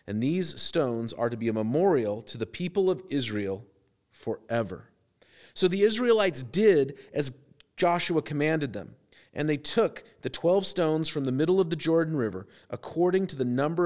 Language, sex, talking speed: English, male, 170 wpm